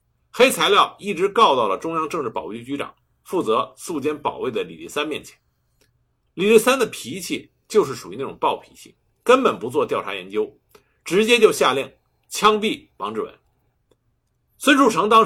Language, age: Chinese, 50-69